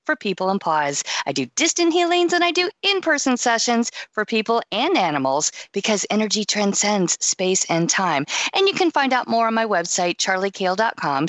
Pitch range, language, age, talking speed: 185-255 Hz, English, 50-69, 180 wpm